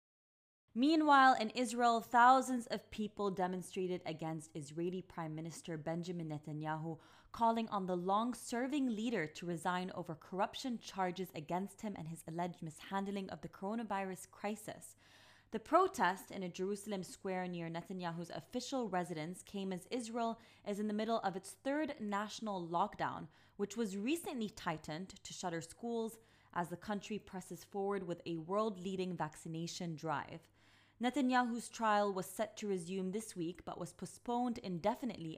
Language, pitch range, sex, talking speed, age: English, 170-220 Hz, female, 140 wpm, 20-39